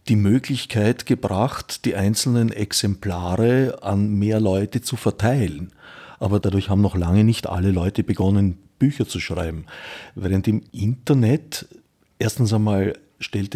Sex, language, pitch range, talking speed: male, German, 100-120 Hz, 130 wpm